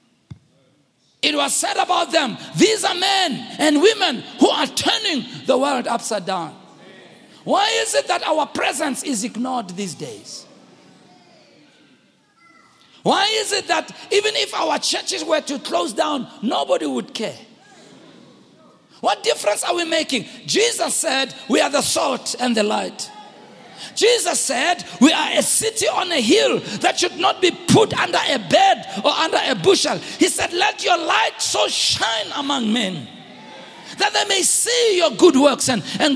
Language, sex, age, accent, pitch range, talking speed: English, male, 50-69, South African, 265-385 Hz, 160 wpm